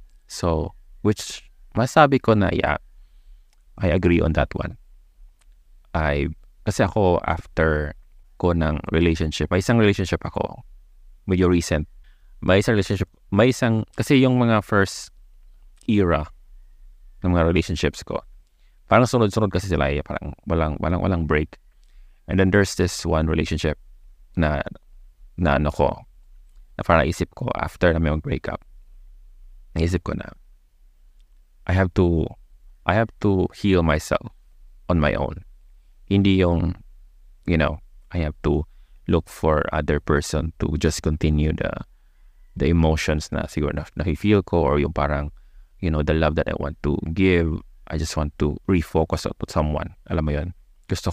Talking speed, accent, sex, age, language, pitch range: 145 wpm, native, male, 20-39, Filipino, 75-95 Hz